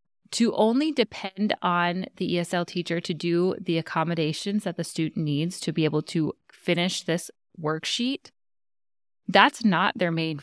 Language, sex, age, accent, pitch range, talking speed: English, female, 20-39, American, 160-195 Hz, 150 wpm